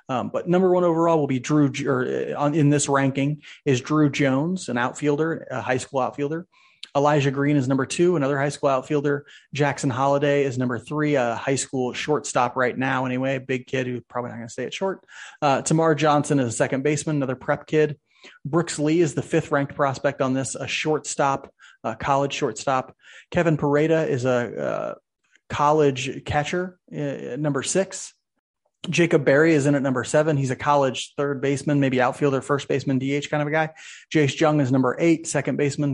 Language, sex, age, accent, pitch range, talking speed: English, male, 30-49, American, 135-155 Hz, 190 wpm